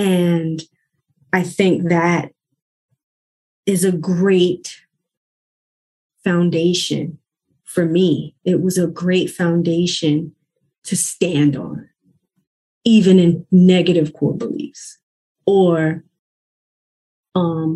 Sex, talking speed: female, 85 wpm